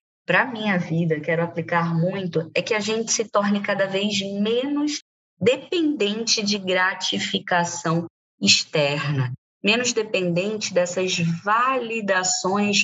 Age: 20-39